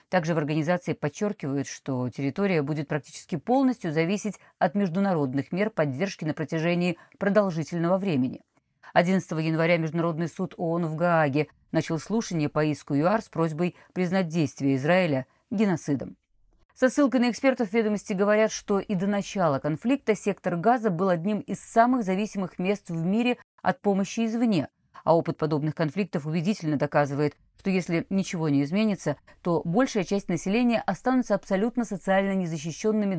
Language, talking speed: Russian, 140 wpm